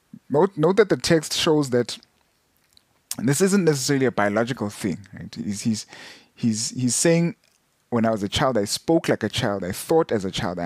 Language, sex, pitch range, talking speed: English, male, 105-140 Hz, 195 wpm